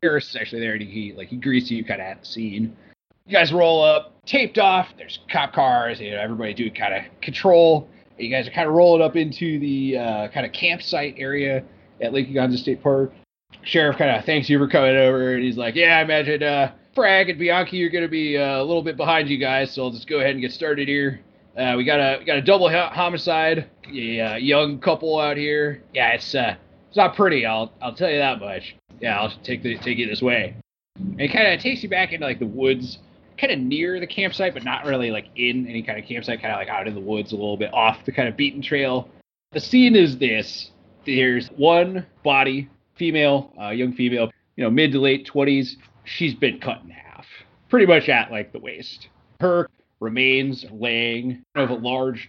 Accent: American